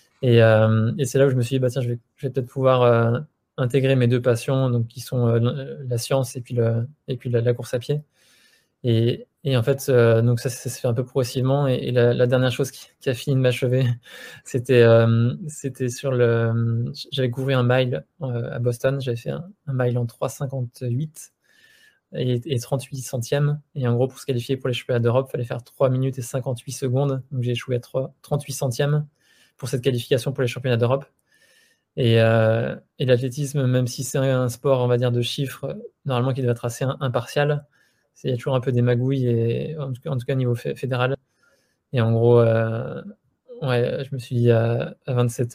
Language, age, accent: French, 20-39, French